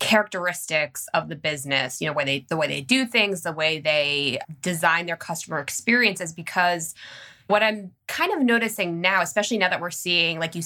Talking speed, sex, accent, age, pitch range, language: 190 wpm, female, American, 20-39, 160-195 Hz, English